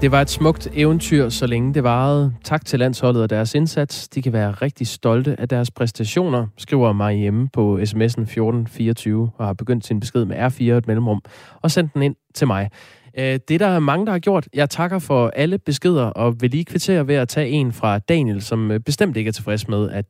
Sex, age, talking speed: male, 20-39, 220 wpm